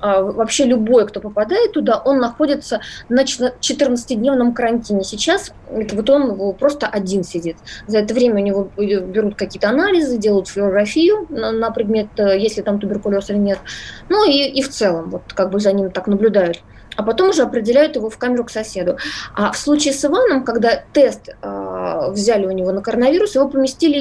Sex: female